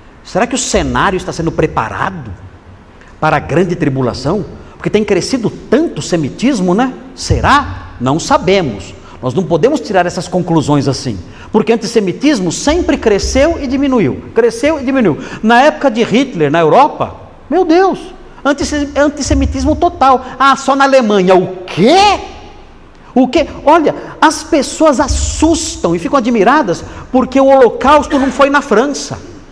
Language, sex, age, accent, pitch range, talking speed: Portuguese, male, 50-69, Brazilian, 205-295 Hz, 140 wpm